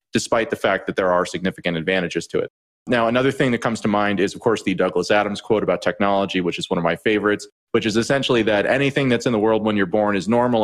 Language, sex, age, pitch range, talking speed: English, male, 30-49, 95-110 Hz, 260 wpm